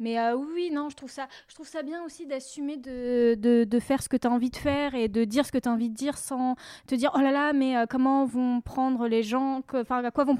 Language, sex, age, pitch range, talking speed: French, female, 10-29, 240-285 Hz, 295 wpm